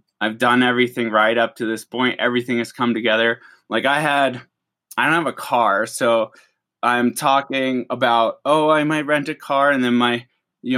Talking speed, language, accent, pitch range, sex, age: 190 wpm, English, American, 120-155 Hz, male, 20-39